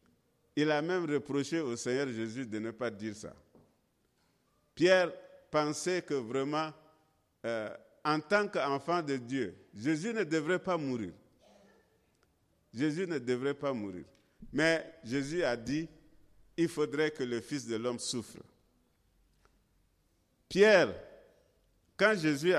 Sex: male